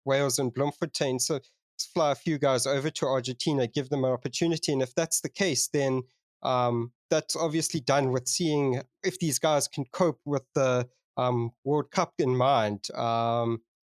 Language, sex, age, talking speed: English, male, 30-49, 175 wpm